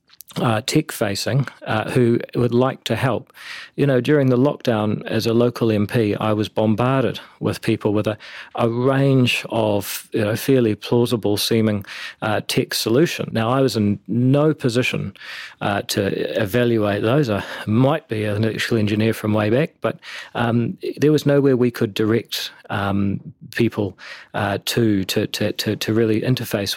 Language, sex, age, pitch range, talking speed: English, male, 40-59, 105-125 Hz, 160 wpm